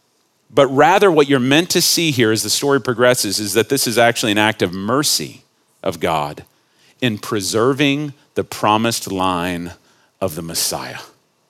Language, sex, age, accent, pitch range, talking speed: English, male, 40-59, American, 100-155 Hz, 160 wpm